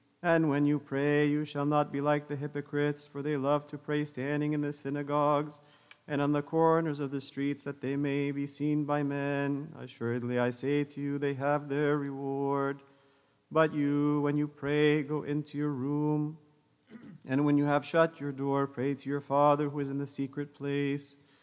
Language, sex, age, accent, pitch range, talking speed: English, male, 40-59, American, 140-150 Hz, 195 wpm